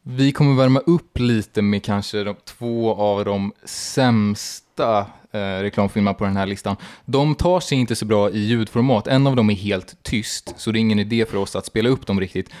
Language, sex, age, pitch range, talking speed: Swedish, male, 20-39, 100-120 Hz, 210 wpm